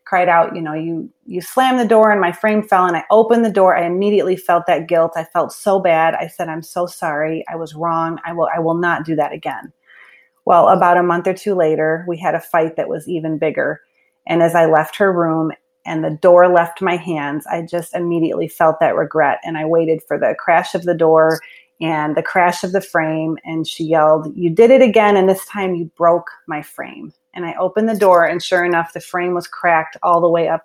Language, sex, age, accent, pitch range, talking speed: English, female, 30-49, American, 165-200 Hz, 235 wpm